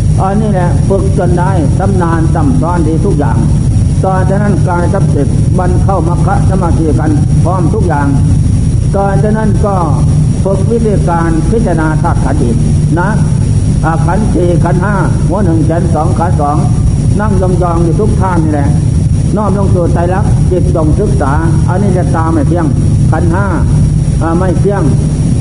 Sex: male